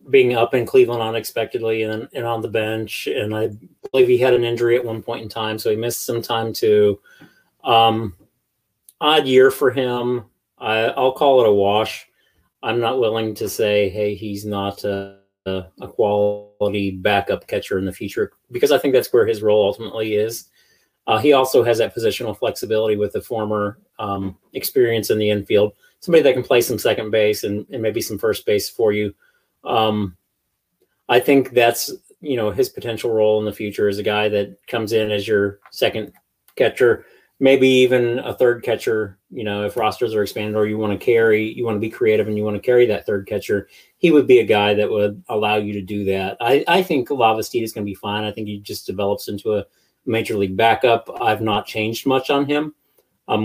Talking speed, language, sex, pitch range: 205 wpm, English, male, 105-120 Hz